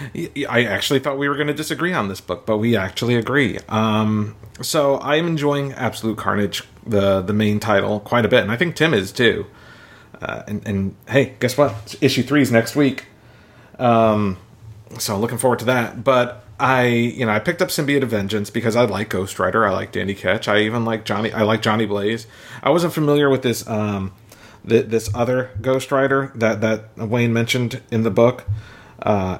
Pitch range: 105-130 Hz